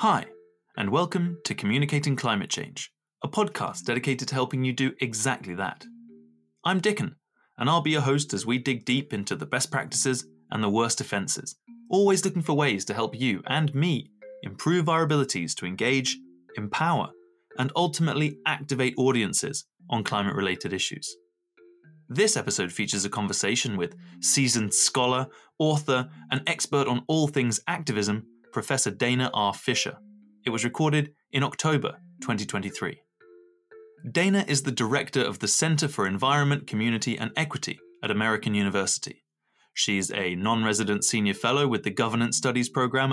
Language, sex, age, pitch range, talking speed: English, male, 20-39, 105-145 Hz, 150 wpm